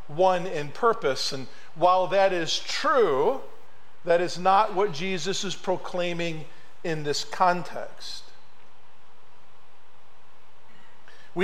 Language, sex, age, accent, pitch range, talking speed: English, male, 50-69, American, 165-215 Hz, 100 wpm